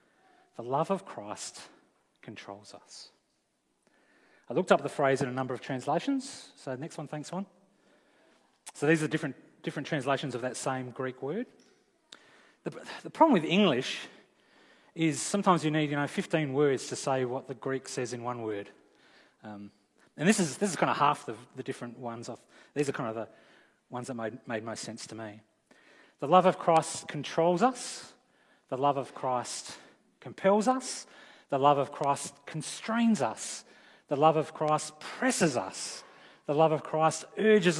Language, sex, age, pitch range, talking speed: English, male, 30-49, 130-180 Hz, 175 wpm